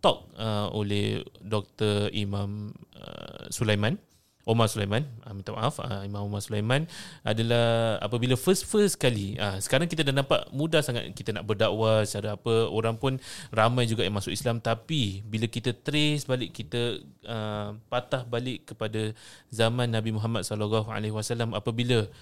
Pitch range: 105-125 Hz